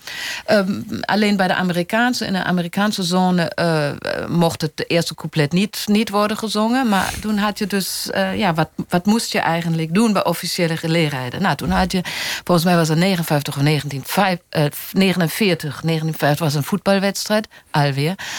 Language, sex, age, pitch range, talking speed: Dutch, female, 50-69, 155-200 Hz, 165 wpm